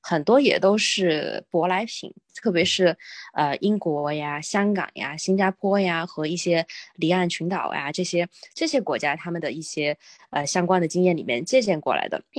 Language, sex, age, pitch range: Chinese, female, 20-39, 170-225 Hz